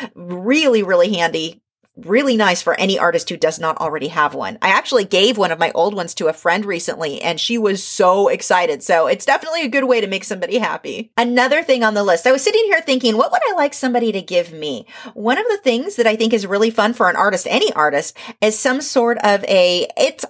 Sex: female